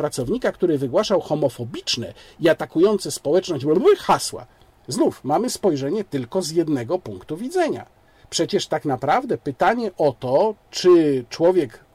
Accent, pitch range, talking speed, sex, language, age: native, 135-190 Hz, 120 wpm, male, Polish, 50-69